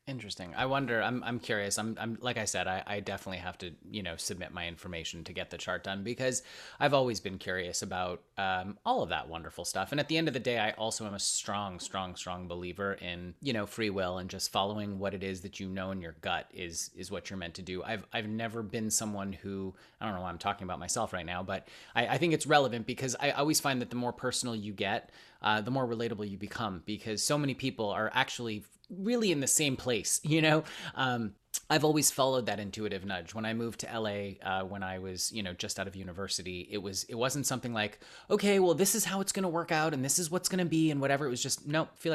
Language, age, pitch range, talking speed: English, 30-49, 95-130 Hz, 255 wpm